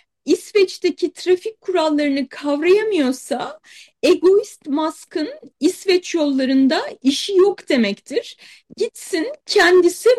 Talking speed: 75 wpm